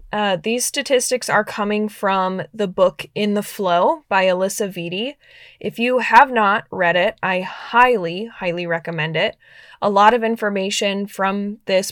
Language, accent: English, American